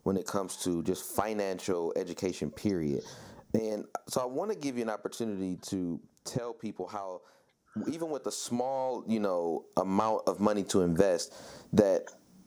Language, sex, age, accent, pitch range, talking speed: English, male, 30-49, American, 90-115 Hz, 160 wpm